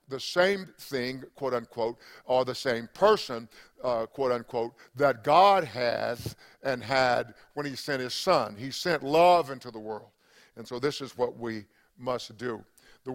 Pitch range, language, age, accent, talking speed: 120-145 Hz, English, 50-69, American, 160 wpm